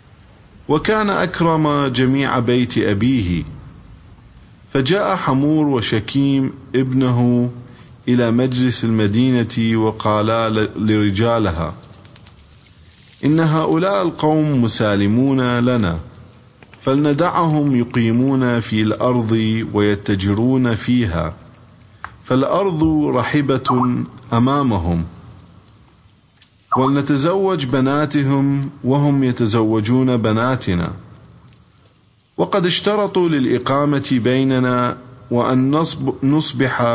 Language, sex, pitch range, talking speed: English, male, 110-140 Hz, 65 wpm